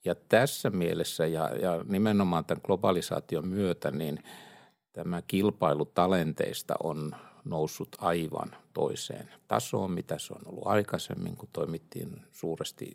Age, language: 60-79, Finnish